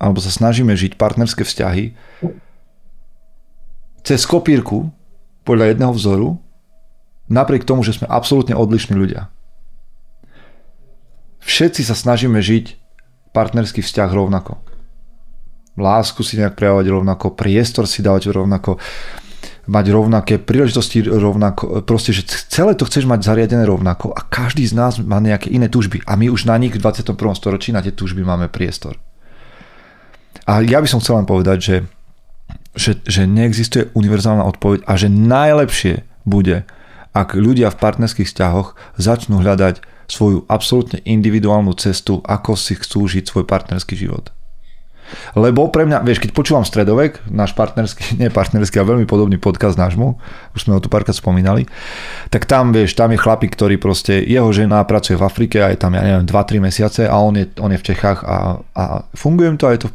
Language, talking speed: Slovak, 160 wpm